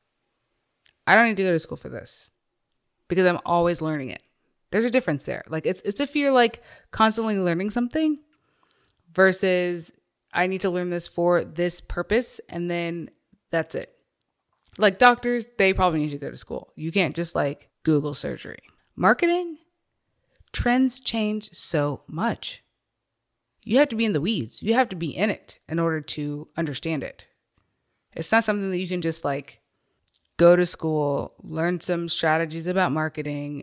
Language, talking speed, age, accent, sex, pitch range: English, 170 wpm, 20-39, American, female, 155-210 Hz